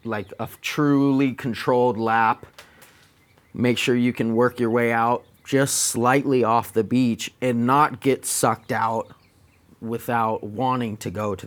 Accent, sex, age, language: American, male, 30-49, English